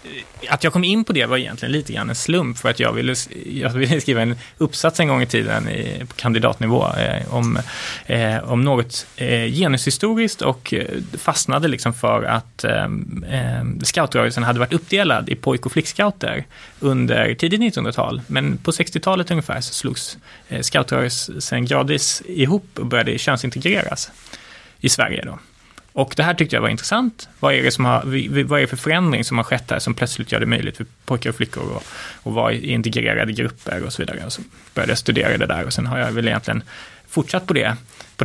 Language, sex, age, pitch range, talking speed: Swedish, male, 20-39, 120-155 Hz, 185 wpm